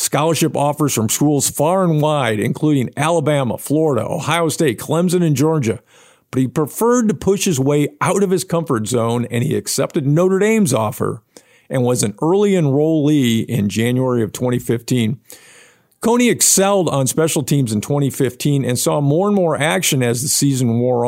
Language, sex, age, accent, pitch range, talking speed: English, male, 50-69, American, 125-165 Hz, 170 wpm